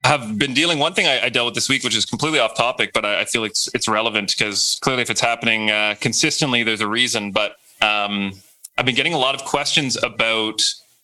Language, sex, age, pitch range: English, male, 30-49, 105-135 Hz